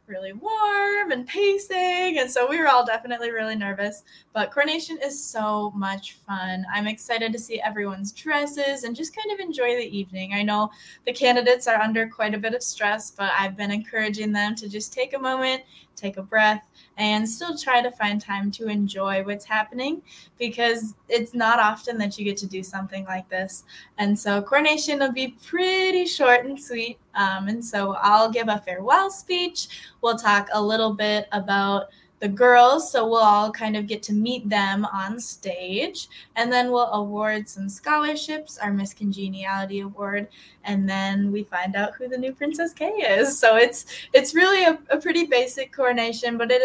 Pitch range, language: 205-250 Hz, English